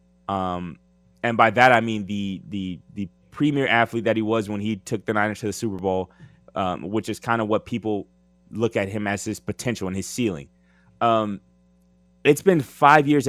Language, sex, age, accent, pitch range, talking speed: English, male, 20-39, American, 85-115 Hz, 195 wpm